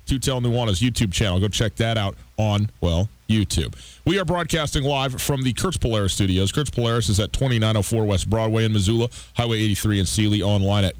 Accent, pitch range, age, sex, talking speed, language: American, 105-135 Hz, 40-59, male, 195 wpm, English